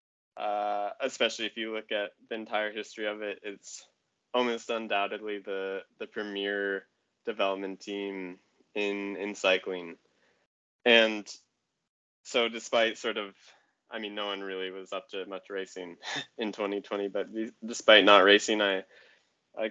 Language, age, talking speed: English, 20-39, 135 wpm